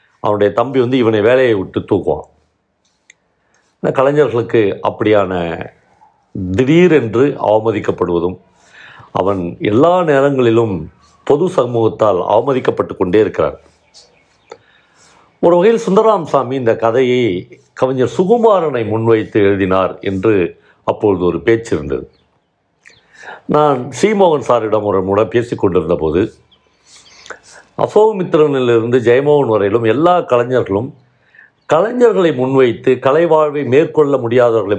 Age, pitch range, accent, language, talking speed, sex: 50-69, 110-150 Hz, native, Tamil, 90 wpm, male